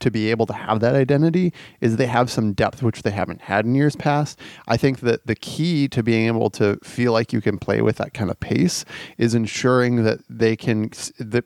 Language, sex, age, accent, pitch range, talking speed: English, male, 30-49, American, 105-125 Hz, 230 wpm